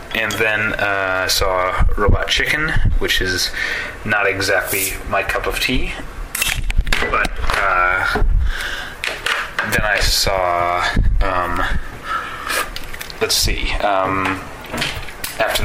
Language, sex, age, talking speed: English, male, 20-39, 90 wpm